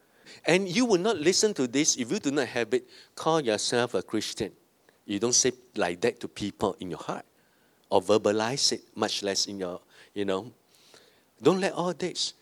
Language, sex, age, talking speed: English, male, 50-69, 195 wpm